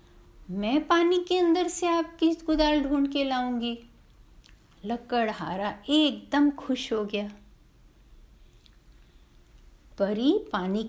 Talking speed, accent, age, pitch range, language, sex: 95 wpm, native, 50-69, 210-320 Hz, Hindi, female